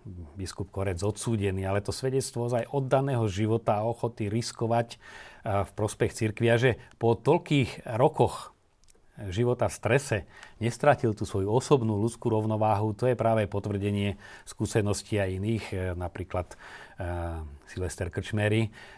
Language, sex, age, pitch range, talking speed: Slovak, male, 40-59, 95-110 Hz, 120 wpm